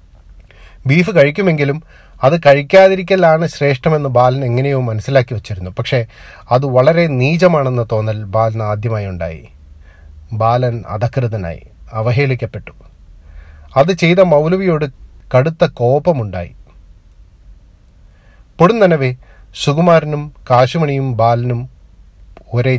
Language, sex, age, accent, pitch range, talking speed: Malayalam, male, 30-49, native, 95-140 Hz, 80 wpm